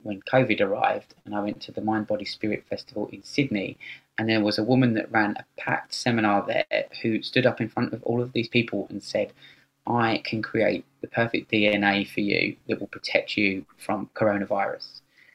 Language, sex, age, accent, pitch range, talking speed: English, male, 20-39, British, 105-130 Hz, 200 wpm